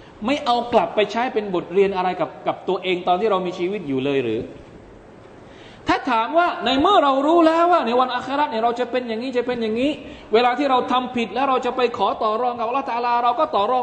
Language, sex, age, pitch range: Thai, male, 20-39, 160-250 Hz